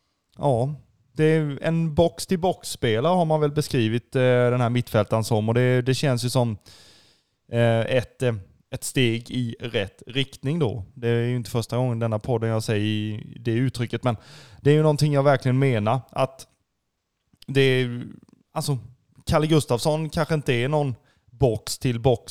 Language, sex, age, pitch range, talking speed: Swedish, male, 20-39, 115-140 Hz, 160 wpm